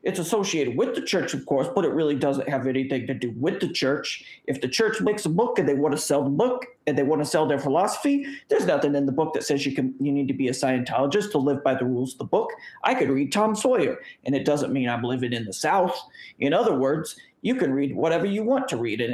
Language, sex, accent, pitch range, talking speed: English, male, American, 140-200 Hz, 275 wpm